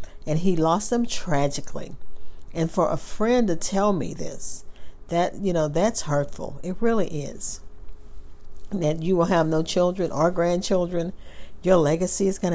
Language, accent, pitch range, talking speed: English, American, 140-180 Hz, 165 wpm